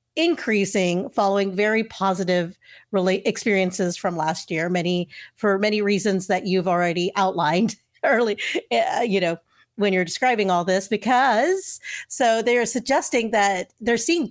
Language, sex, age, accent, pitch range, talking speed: English, female, 40-59, American, 185-240 Hz, 140 wpm